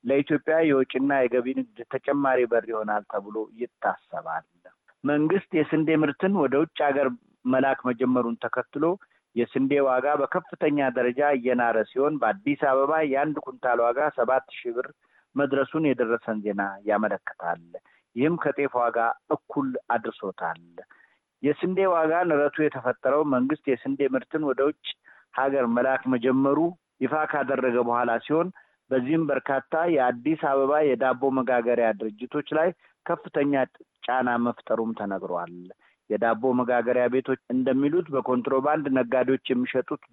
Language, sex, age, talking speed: Amharic, male, 50-69, 110 wpm